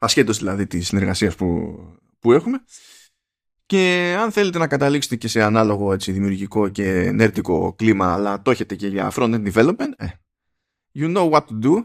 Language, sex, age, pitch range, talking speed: Greek, male, 20-39, 100-155 Hz, 160 wpm